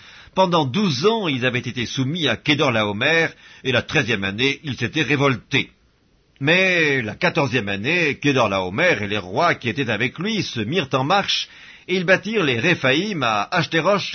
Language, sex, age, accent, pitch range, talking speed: French, male, 50-69, French, 125-170 Hz, 180 wpm